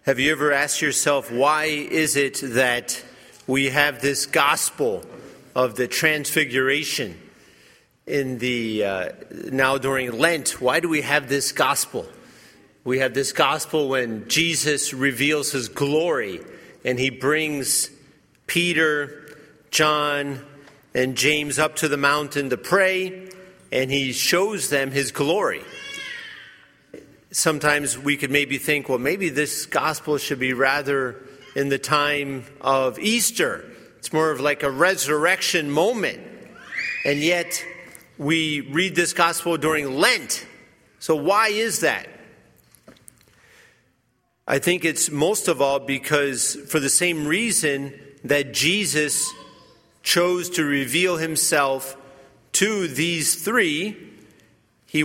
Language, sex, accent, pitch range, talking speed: English, male, American, 135-160 Hz, 125 wpm